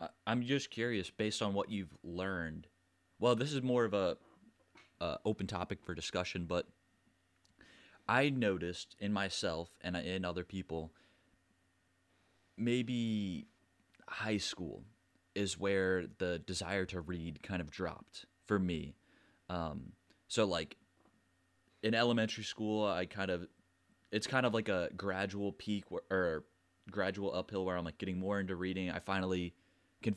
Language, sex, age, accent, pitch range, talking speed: English, male, 20-39, American, 90-100 Hz, 140 wpm